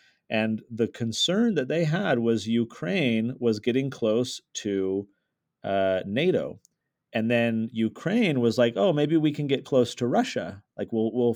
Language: English